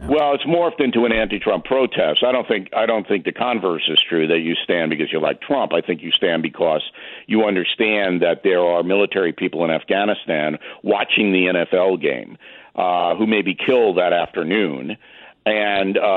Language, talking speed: English, 185 wpm